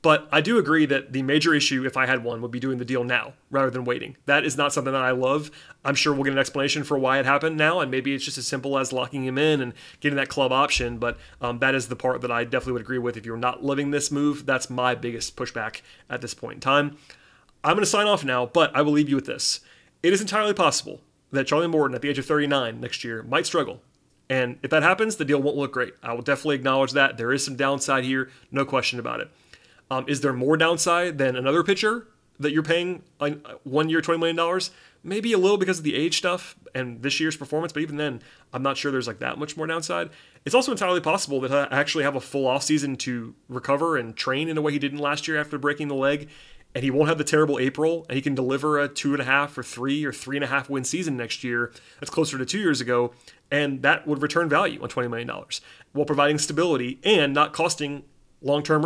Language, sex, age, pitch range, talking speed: English, male, 30-49, 130-155 Hz, 250 wpm